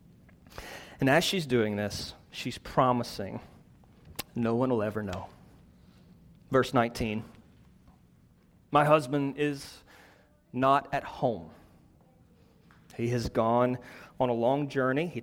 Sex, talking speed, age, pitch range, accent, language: male, 110 wpm, 30-49, 115-145 Hz, American, English